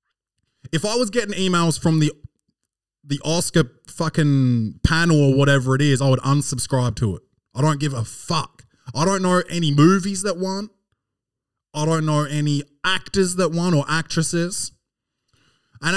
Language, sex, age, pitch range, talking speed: English, male, 20-39, 125-175 Hz, 160 wpm